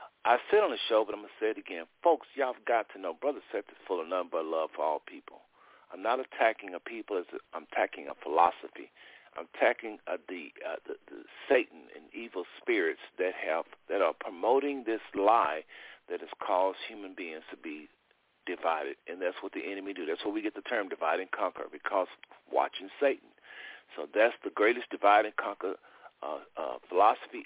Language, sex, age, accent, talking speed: English, male, 50-69, American, 205 wpm